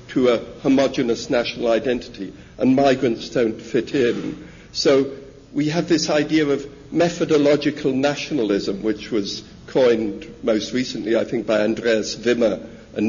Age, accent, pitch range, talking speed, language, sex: 60-79, British, 120-150 Hz, 135 wpm, English, male